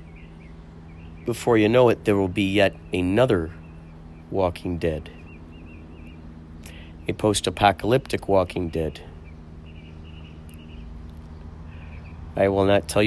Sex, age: male, 40-59